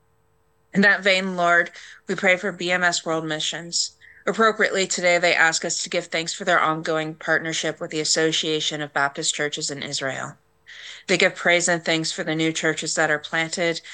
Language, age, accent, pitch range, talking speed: English, 30-49, American, 155-180 Hz, 180 wpm